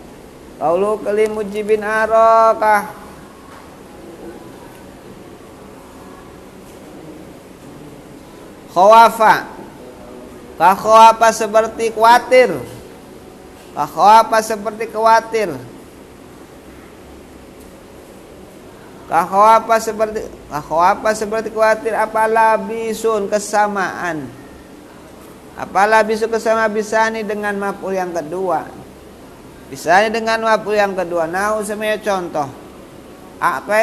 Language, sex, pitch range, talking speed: Indonesian, male, 200-225 Hz, 75 wpm